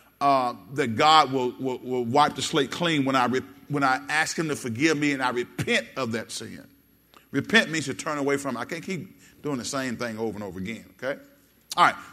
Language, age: English, 40-59